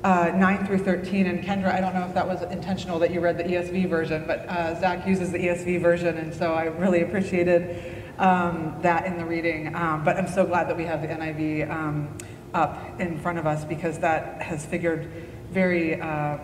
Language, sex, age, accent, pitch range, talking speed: English, female, 30-49, American, 165-185 Hz, 210 wpm